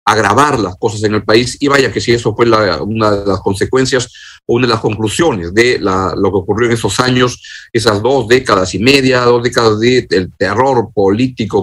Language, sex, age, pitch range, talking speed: Spanish, male, 50-69, 105-130 Hz, 210 wpm